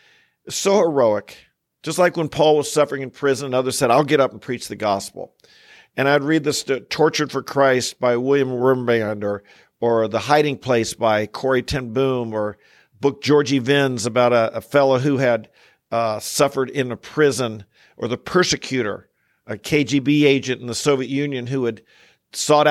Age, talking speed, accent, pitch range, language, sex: 50-69, 175 wpm, American, 125-150 Hz, English, male